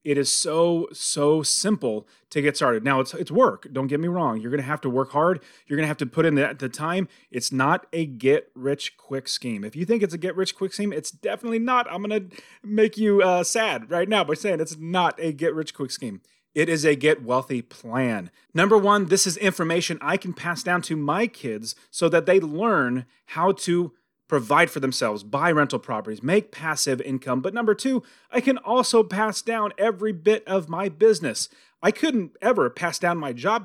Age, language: 30-49, English